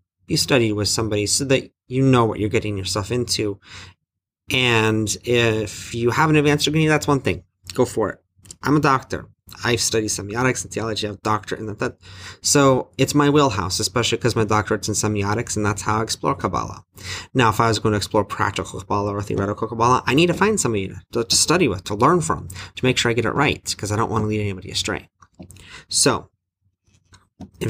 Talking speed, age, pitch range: 210 wpm, 30-49, 95-115 Hz